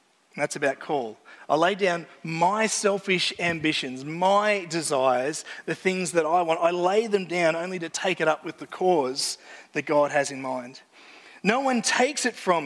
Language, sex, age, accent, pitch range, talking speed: English, male, 30-49, Australian, 150-195 Hz, 180 wpm